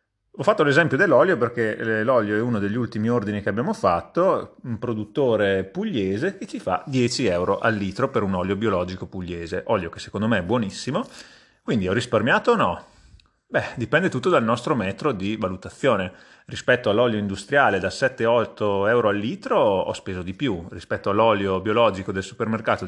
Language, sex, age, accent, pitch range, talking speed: Italian, male, 30-49, native, 95-115 Hz, 170 wpm